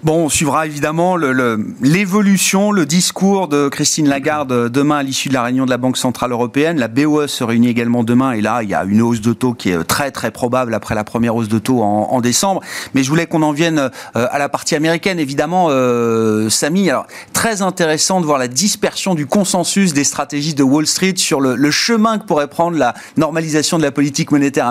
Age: 30-49